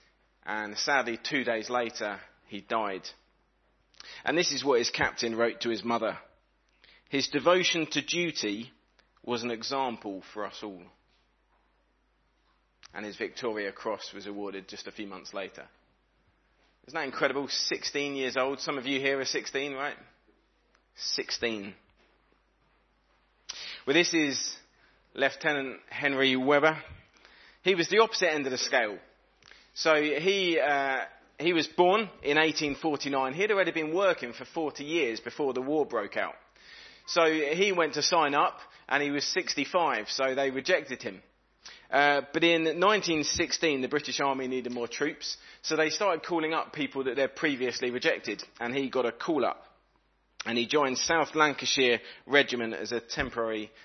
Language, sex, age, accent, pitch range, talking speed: English, male, 30-49, British, 120-155 Hz, 150 wpm